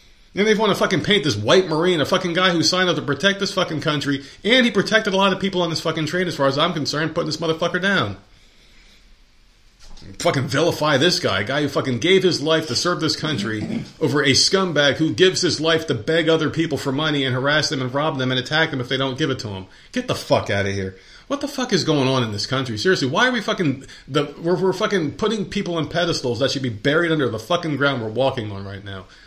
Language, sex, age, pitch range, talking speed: English, male, 40-59, 110-165 Hz, 250 wpm